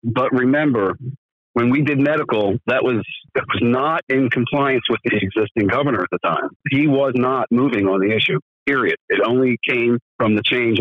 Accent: American